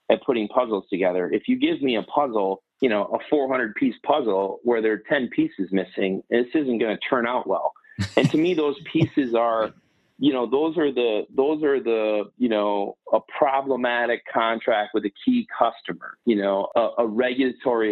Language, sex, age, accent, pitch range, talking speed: English, male, 30-49, American, 105-135 Hz, 190 wpm